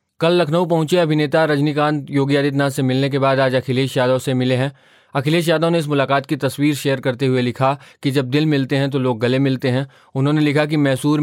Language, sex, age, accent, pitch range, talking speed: Hindi, male, 20-39, native, 130-150 Hz, 225 wpm